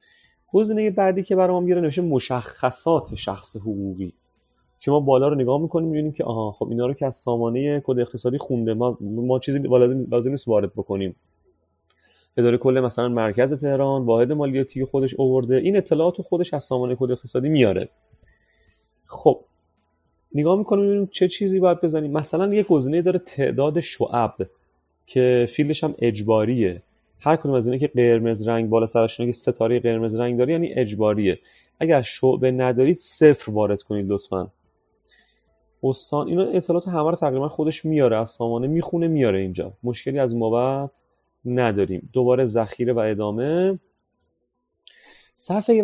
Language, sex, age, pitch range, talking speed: Persian, male, 30-49, 115-150 Hz, 150 wpm